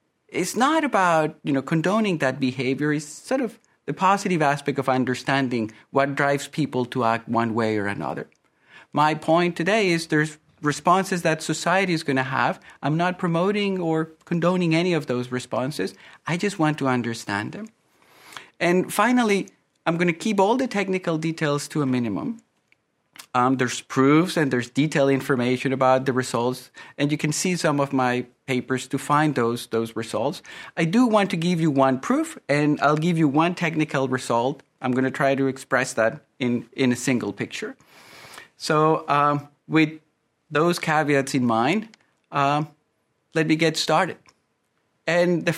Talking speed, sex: 170 wpm, male